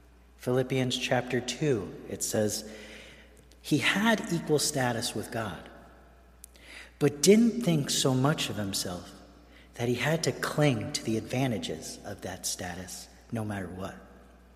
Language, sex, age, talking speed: English, male, 40-59, 130 wpm